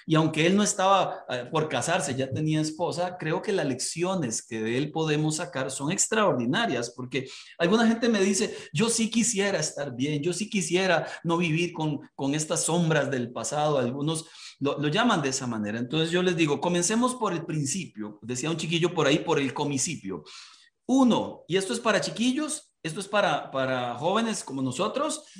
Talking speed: 185 wpm